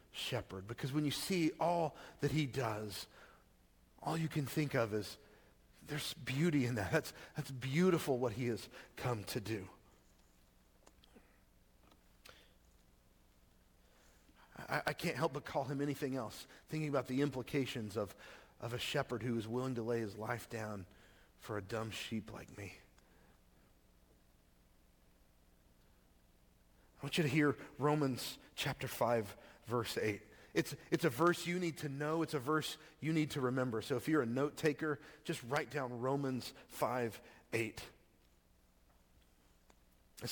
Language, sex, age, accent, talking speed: English, male, 40-59, American, 145 wpm